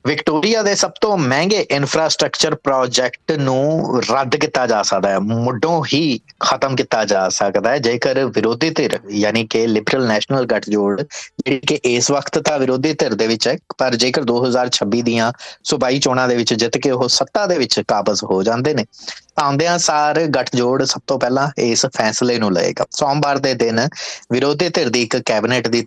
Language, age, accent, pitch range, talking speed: English, 20-39, Indian, 115-140 Hz, 115 wpm